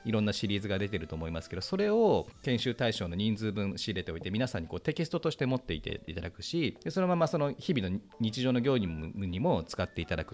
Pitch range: 90-130 Hz